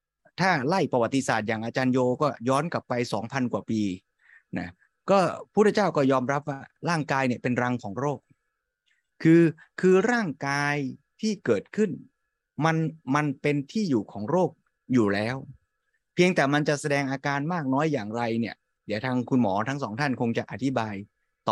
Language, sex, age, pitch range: Thai, male, 20-39, 125-160 Hz